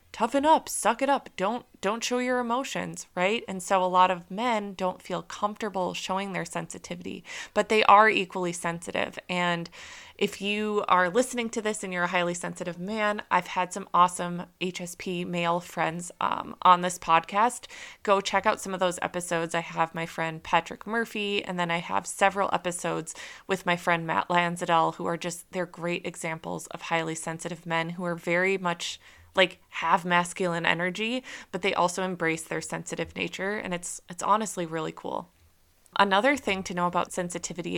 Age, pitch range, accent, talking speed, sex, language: 20-39, 170-200 Hz, American, 180 wpm, female, English